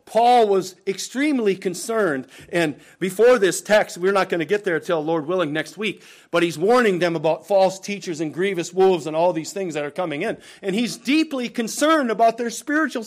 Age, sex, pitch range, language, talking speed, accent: 40-59, male, 140-190 Hz, English, 200 wpm, American